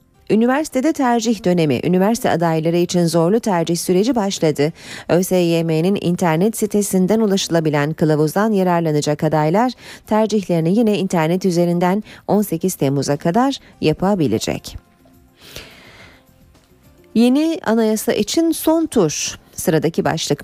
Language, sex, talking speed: Turkish, female, 95 wpm